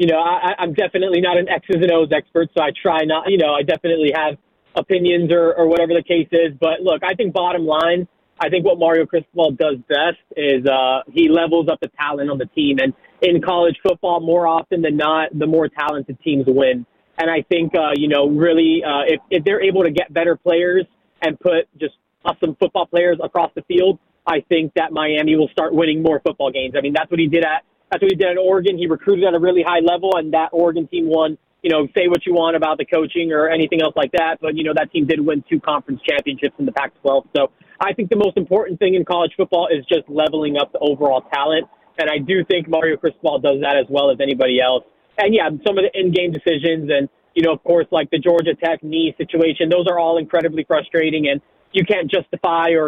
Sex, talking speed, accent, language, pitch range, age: male, 235 wpm, American, English, 150-175 Hz, 20-39